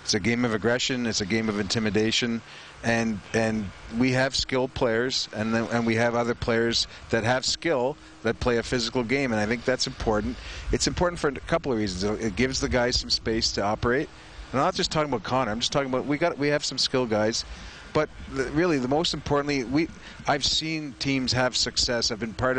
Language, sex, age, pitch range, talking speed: English, male, 40-59, 105-125 Hz, 225 wpm